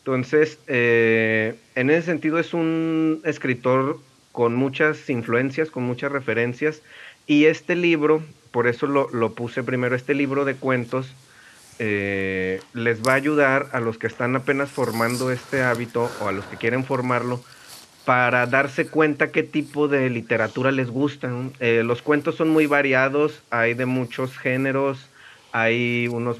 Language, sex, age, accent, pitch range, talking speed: Spanish, male, 30-49, Mexican, 115-140 Hz, 150 wpm